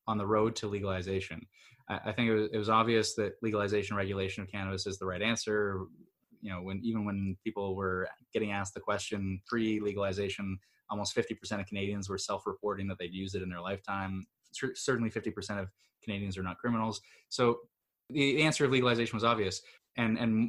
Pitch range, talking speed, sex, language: 100-115 Hz, 190 wpm, male, English